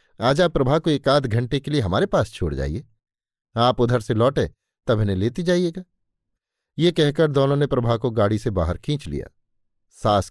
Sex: male